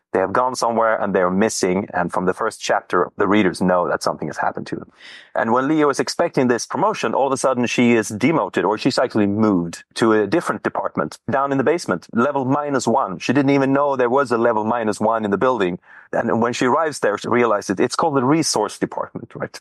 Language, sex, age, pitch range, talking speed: English, male, 30-49, 105-130 Hz, 235 wpm